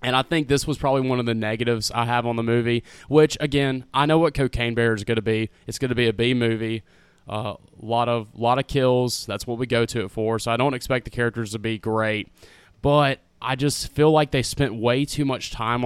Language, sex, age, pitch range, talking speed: English, male, 20-39, 110-125 Hz, 255 wpm